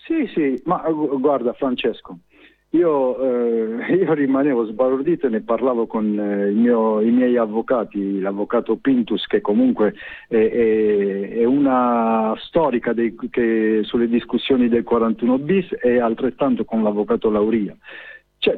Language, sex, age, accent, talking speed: Italian, male, 50-69, native, 130 wpm